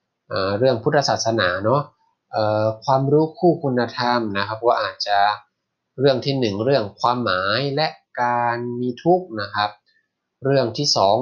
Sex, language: male, Thai